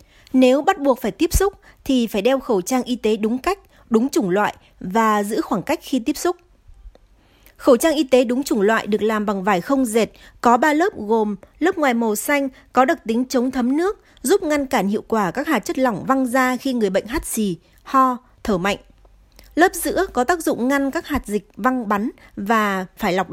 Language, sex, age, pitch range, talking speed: Vietnamese, female, 20-39, 215-285 Hz, 220 wpm